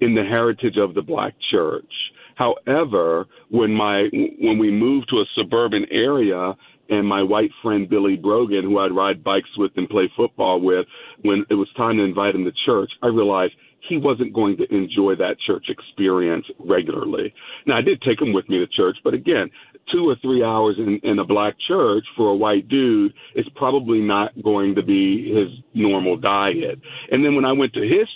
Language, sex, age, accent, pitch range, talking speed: English, male, 50-69, American, 105-140 Hz, 195 wpm